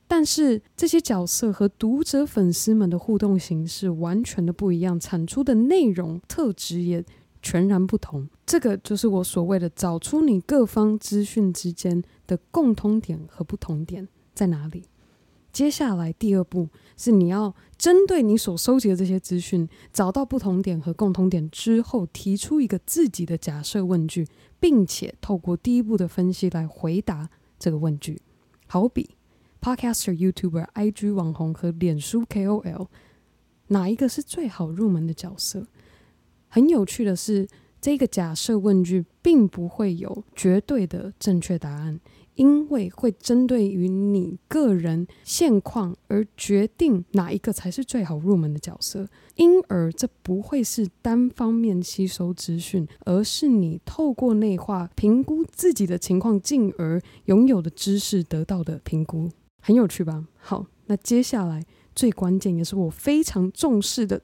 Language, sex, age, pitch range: Chinese, female, 20-39, 175-230 Hz